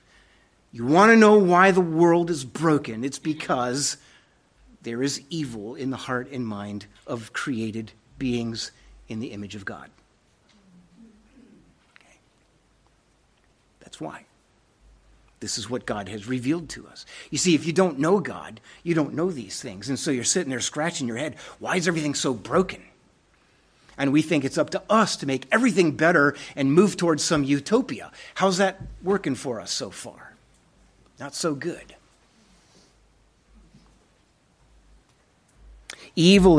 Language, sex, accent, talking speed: English, male, American, 145 wpm